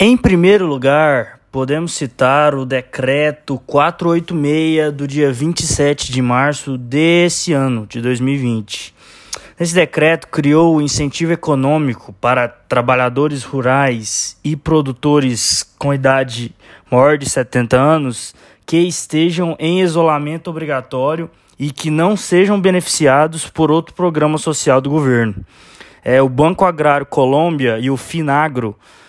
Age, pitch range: 20-39, 135-165 Hz